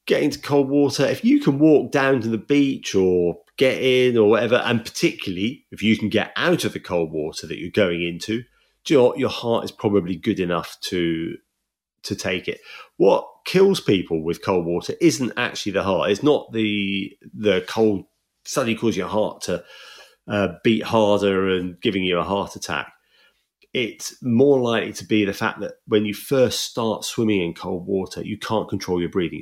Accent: British